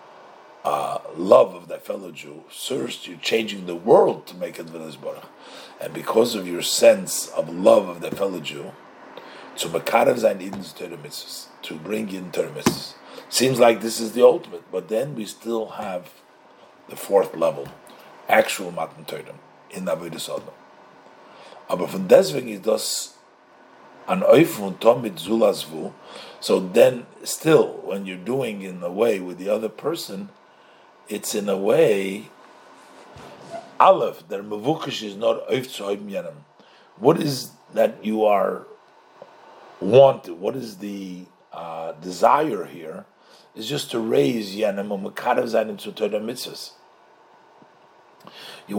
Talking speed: 120 wpm